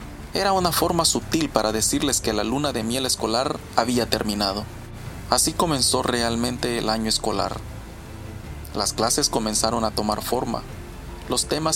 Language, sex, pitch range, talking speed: Spanish, male, 110-130 Hz, 145 wpm